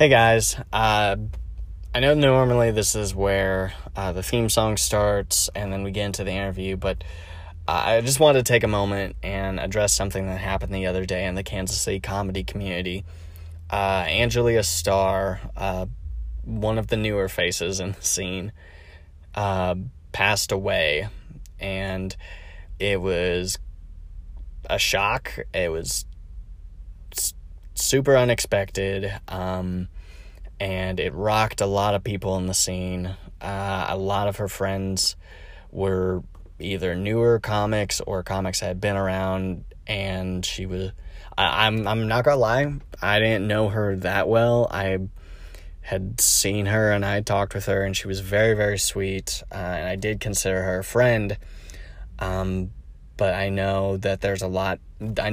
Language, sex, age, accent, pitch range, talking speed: English, male, 20-39, American, 90-100 Hz, 155 wpm